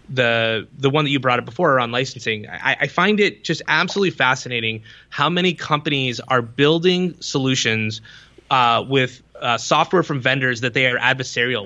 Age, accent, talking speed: 20-39, American, 170 wpm